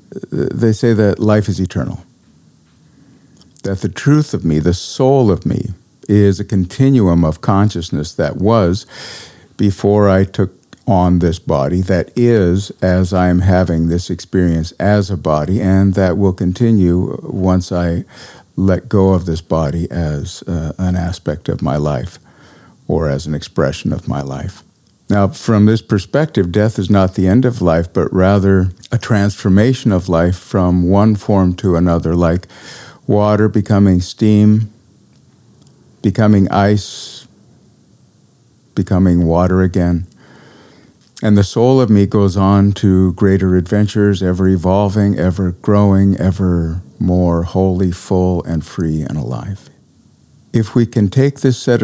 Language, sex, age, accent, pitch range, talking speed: English, male, 50-69, American, 90-105 Hz, 140 wpm